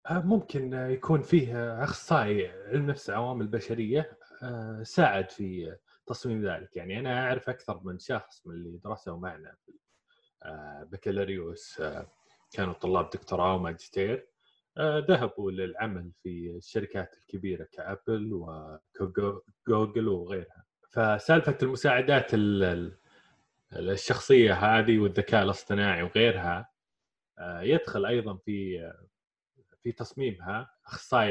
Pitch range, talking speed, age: 95-120 Hz, 90 wpm, 20-39